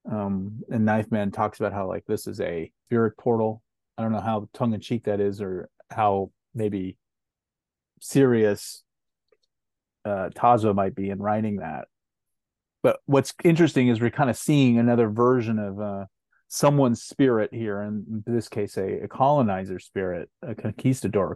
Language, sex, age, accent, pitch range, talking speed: English, male, 30-49, American, 100-120 Hz, 160 wpm